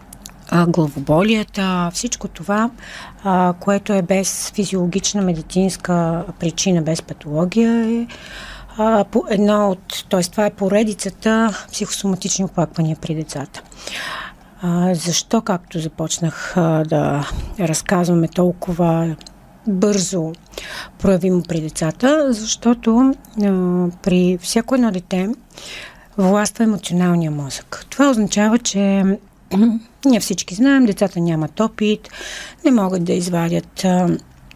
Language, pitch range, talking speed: Bulgarian, 170-210 Hz, 95 wpm